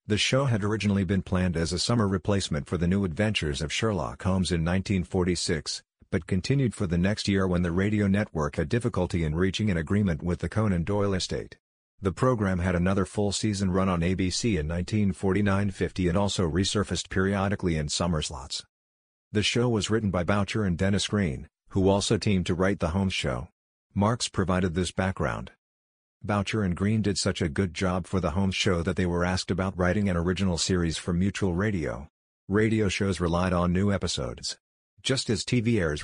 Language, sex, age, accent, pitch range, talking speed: English, male, 50-69, American, 90-100 Hz, 190 wpm